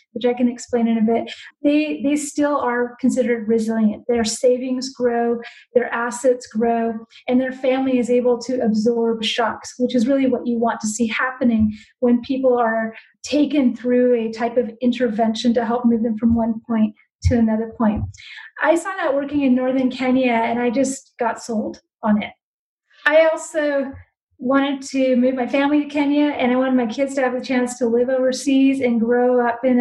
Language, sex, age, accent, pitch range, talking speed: English, female, 30-49, American, 240-270 Hz, 190 wpm